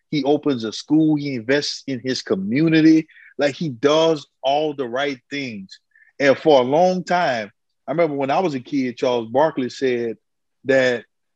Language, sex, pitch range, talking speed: English, male, 125-155 Hz, 170 wpm